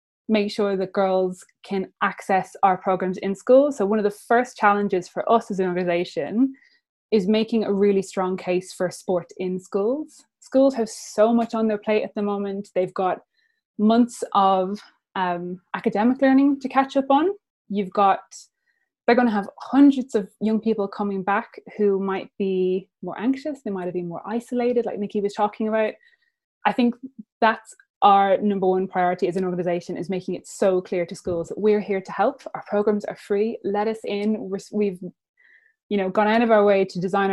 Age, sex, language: 20-39, female, English